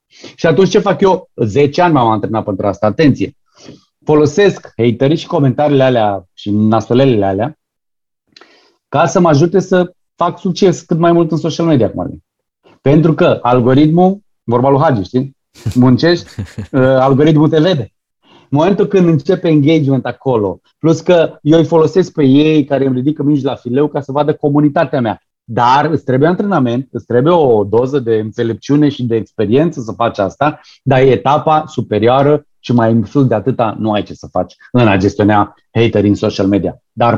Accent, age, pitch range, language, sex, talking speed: native, 30-49, 120-160 Hz, Romanian, male, 175 wpm